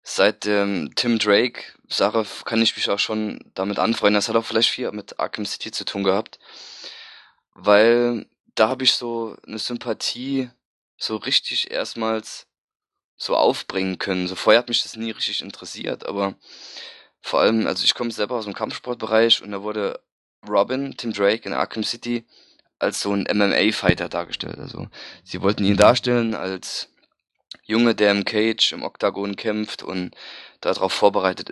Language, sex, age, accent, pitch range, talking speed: German, male, 20-39, German, 95-115 Hz, 160 wpm